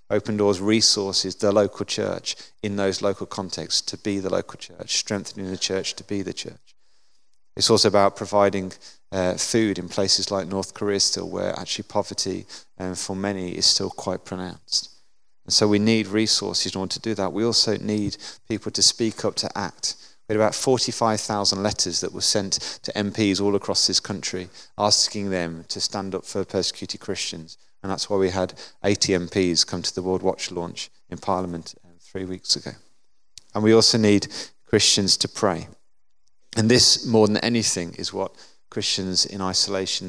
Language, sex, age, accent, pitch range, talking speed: English, male, 30-49, British, 95-110 Hz, 180 wpm